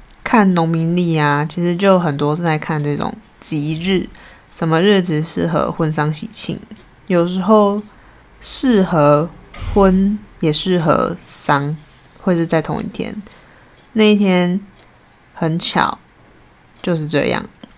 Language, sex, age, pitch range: Chinese, female, 20-39, 155-185 Hz